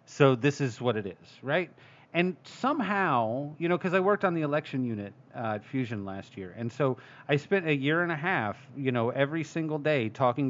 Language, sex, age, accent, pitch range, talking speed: English, male, 40-59, American, 125-155 Hz, 215 wpm